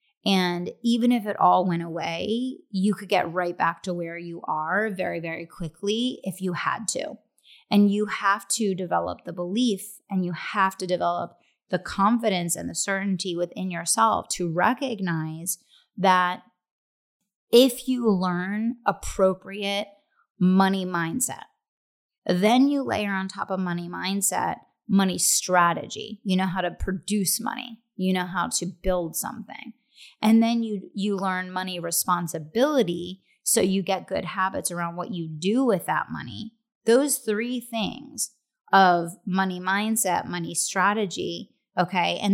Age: 30-49